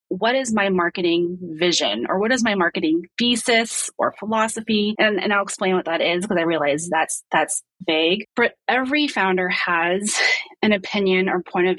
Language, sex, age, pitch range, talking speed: English, female, 30-49, 165-210 Hz, 180 wpm